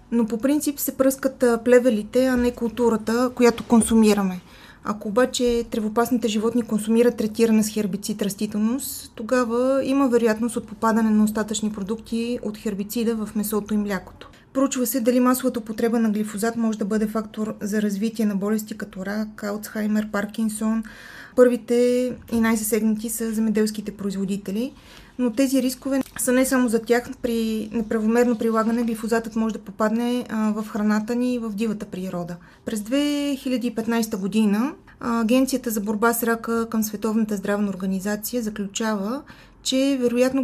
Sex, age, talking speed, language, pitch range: female, 20-39, 140 wpm, Bulgarian, 215-245 Hz